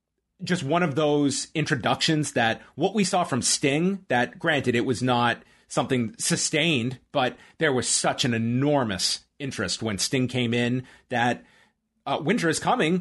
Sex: male